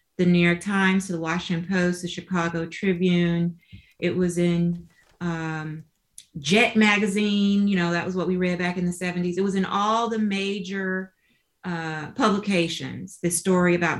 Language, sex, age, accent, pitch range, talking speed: English, female, 30-49, American, 160-190 Hz, 165 wpm